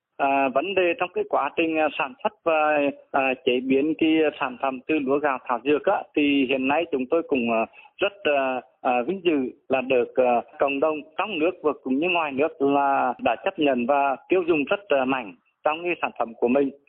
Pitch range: 135-200 Hz